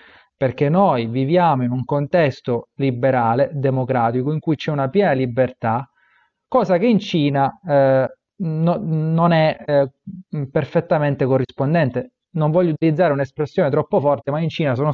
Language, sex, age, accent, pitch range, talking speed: Italian, male, 30-49, native, 135-170 Hz, 140 wpm